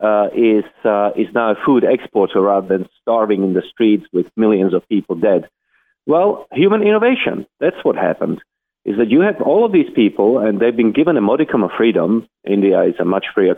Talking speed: 205 wpm